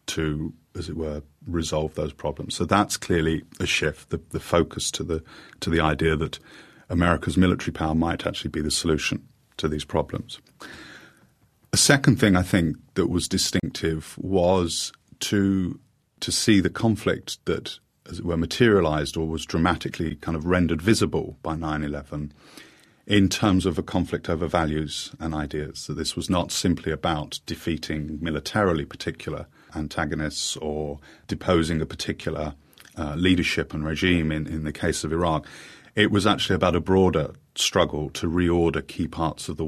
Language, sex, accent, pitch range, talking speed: English, male, British, 75-90 Hz, 160 wpm